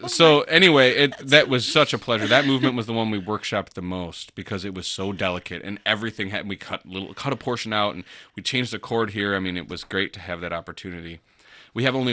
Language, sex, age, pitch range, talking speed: English, male, 30-49, 90-120 Hz, 245 wpm